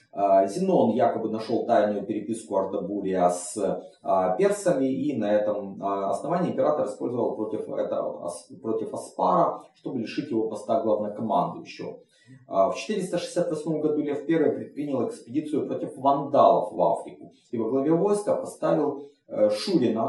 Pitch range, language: 105-160 Hz, Russian